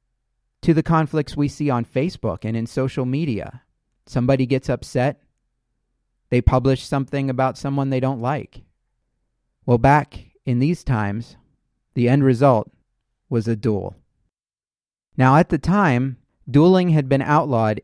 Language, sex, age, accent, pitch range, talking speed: English, male, 30-49, American, 115-140 Hz, 140 wpm